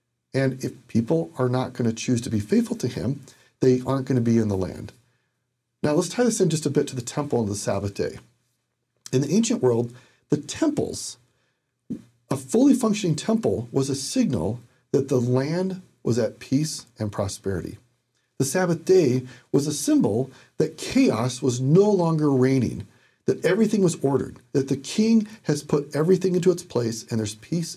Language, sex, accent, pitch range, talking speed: English, male, American, 120-165 Hz, 185 wpm